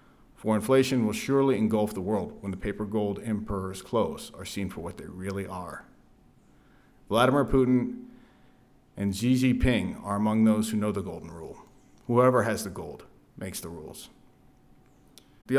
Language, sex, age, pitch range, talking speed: English, male, 40-59, 100-115 Hz, 160 wpm